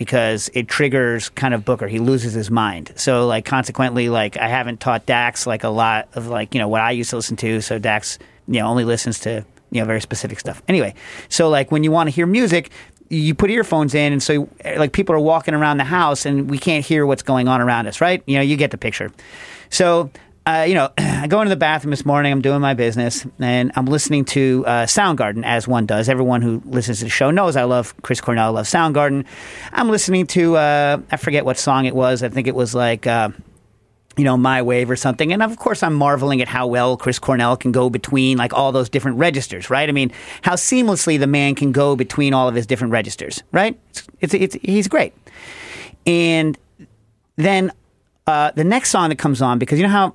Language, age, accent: English, 40-59, American